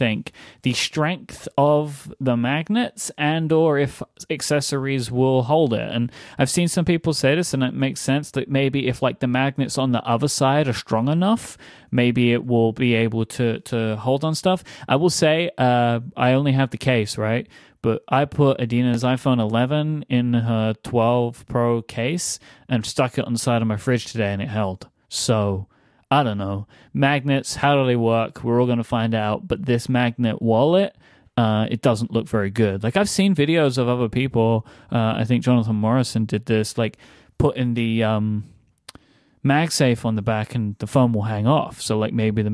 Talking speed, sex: 195 wpm, male